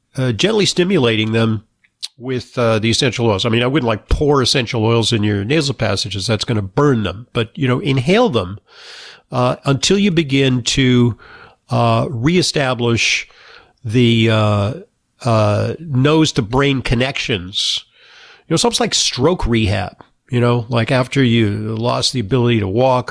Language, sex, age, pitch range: English, male, 50-69, 115-140 Hz